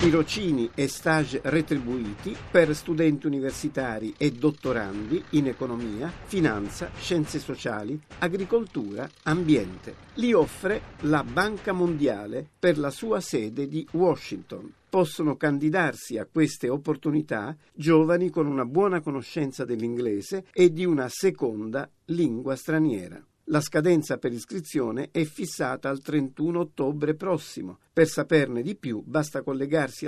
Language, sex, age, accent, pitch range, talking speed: Italian, male, 50-69, native, 130-175 Hz, 120 wpm